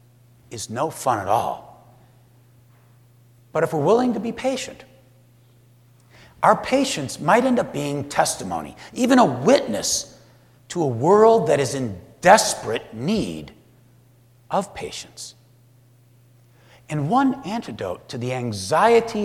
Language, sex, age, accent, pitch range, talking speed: English, male, 60-79, American, 120-165 Hz, 120 wpm